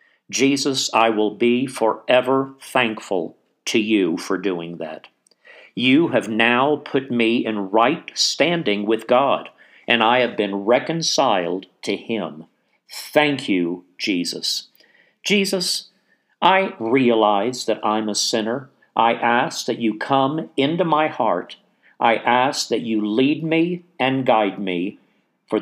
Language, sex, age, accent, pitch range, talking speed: English, male, 50-69, American, 110-145 Hz, 130 wpm